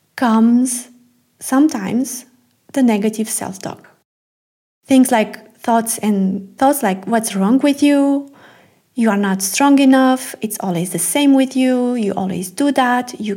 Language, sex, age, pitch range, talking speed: English, female, 30-49, 215-280 Hz, 140 wpm